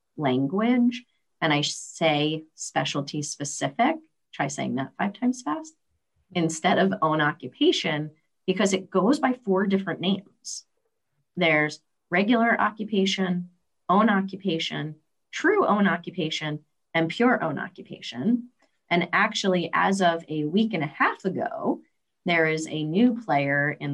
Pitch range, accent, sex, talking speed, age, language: 150-200 Hz, American, female, 130 wpm, 30-49, English